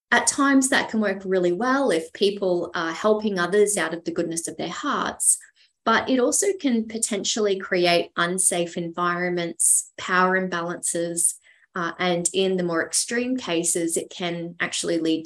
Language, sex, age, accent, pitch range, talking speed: English, female, 20-39, Australian, 175-230 Hz, 155 wpm